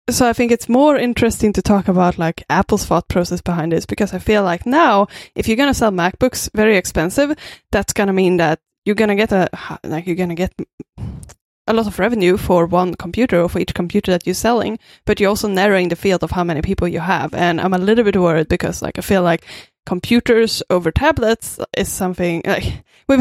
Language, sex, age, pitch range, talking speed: English, female, 20-39, 175-210 Hz, 225 wpm